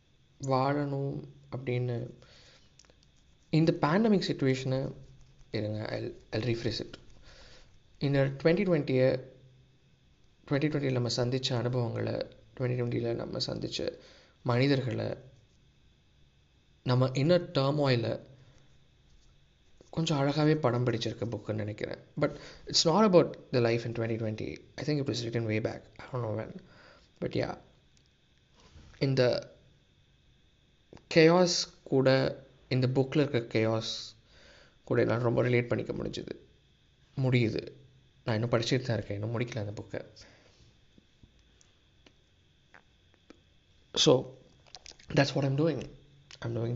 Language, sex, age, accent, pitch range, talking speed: Tamil, male, 20-39, native, 110-135 Hz, 95 wpm